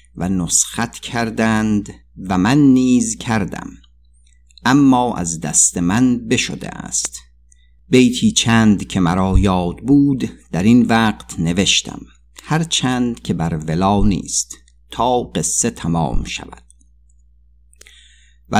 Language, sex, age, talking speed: Persian, male, 50-69, 110 wpm